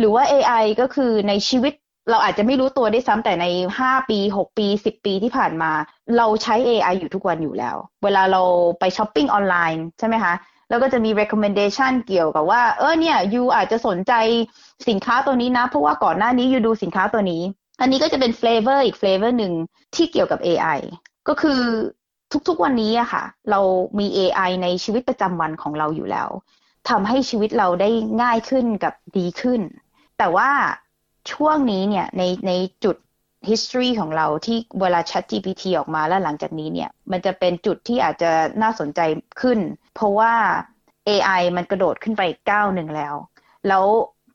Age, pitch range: 20-39, 180-240 Hz